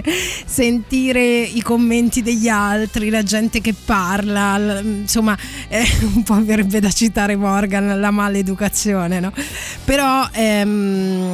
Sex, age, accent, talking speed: female, 20-39, native, 105 wpm